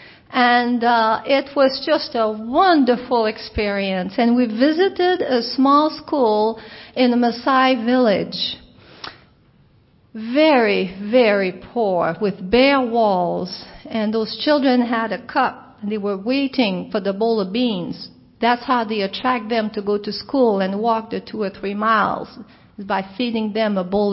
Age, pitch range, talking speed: 40-59, 215-275 Hz, 150 wpm